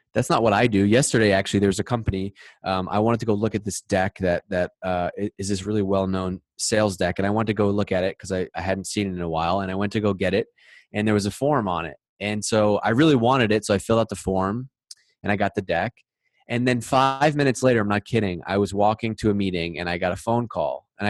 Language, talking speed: English, 275 wpm